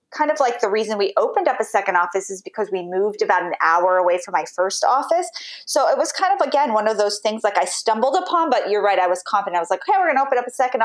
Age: 20-39